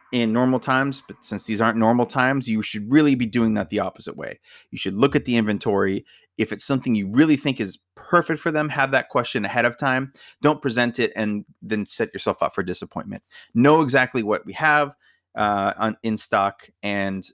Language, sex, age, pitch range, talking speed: English, male, 30-49, 100-130 Hz, 205 wpm